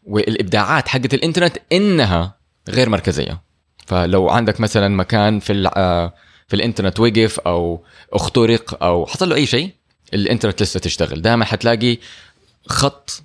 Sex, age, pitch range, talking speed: male, 20-39, 85-120 Hz, 120 wpm